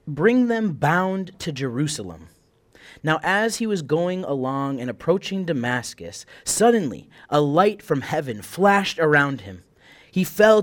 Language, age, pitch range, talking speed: English, 30-49, 130-190 Hz, 135 wpm